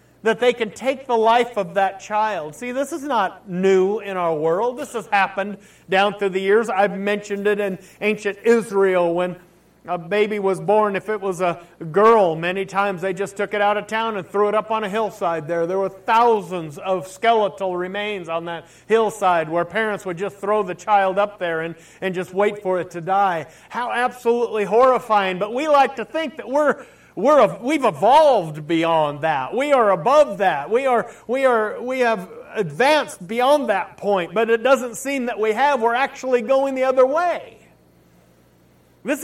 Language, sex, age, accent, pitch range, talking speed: English, male, 50-69, American, 180-230 Hz, 195 wpm